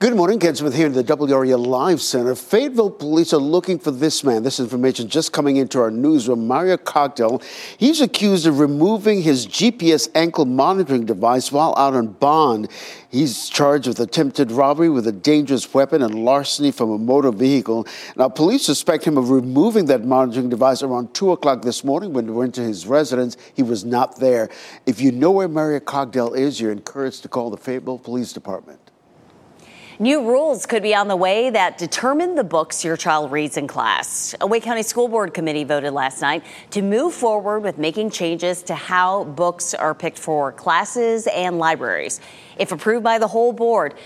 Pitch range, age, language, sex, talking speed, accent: 135-195 Hz, 50-69, English, male, 190 wpm, American